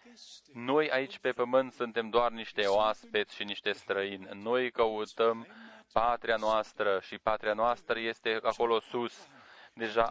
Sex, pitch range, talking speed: male, 115-140 Hz, 130 wpm